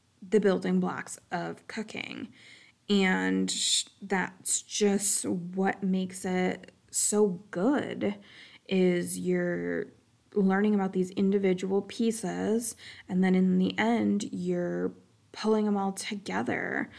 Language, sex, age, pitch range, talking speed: English, female, 20-39, 175-205 Hz, 105 wpm